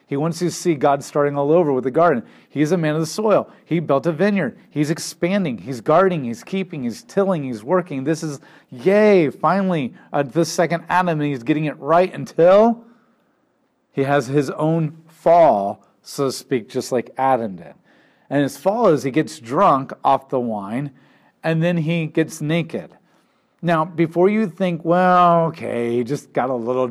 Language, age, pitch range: English, 40-59, 135-170 Hz